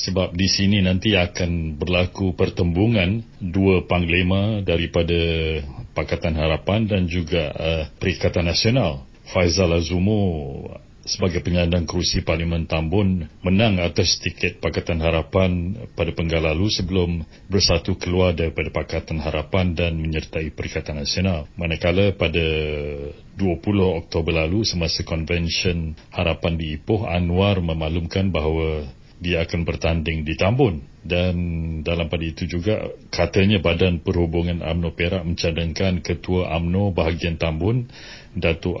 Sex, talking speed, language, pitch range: male, 115 wpm, Malay, 80-95 Hz